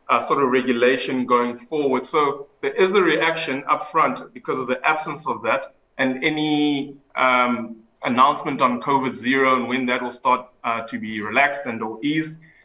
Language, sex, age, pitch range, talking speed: English, male, 30-49, 125-155 Hz, 180 wpm